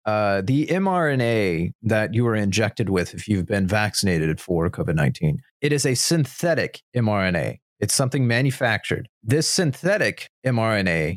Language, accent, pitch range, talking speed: English, American, 110-145 Hz, 135 wpm